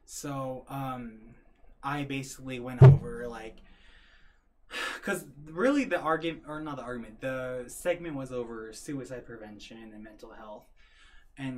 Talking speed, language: 130 wpm, English